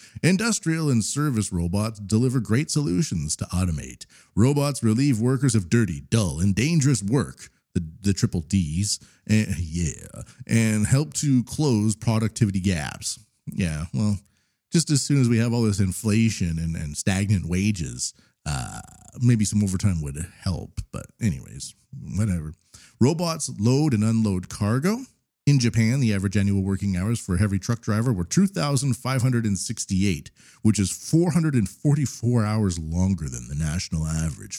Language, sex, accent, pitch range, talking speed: English, male, American, 95-125 Hz, 140 wpm